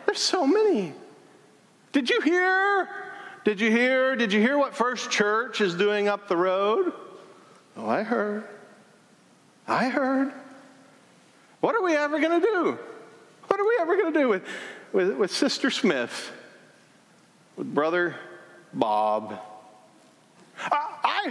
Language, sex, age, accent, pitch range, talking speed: English, male, 40-59, American, 175-290 Hz, 140 wpm